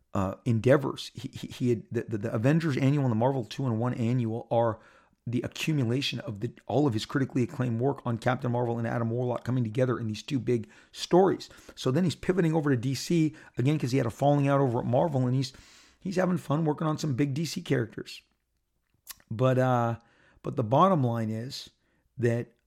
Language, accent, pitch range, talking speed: English, American, 115-135 Hz, 205 wpm